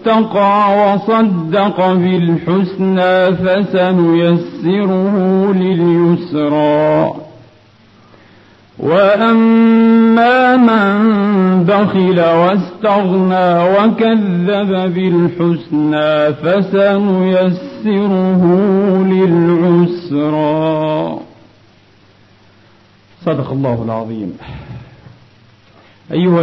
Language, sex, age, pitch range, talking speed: Arabic, male, 50-69, 120-185 Hz, 35 wpm